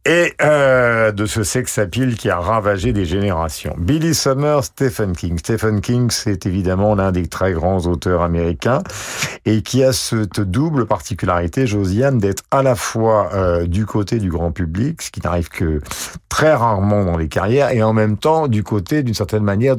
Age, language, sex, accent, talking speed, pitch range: 50-69, French, male, French, 180 wpm, 90-125 Hz